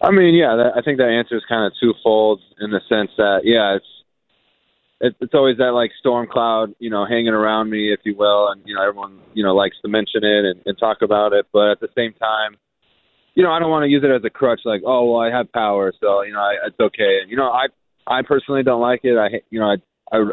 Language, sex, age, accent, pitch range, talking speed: English, male, 20-39, American, 100-120 Hz, 250 wpm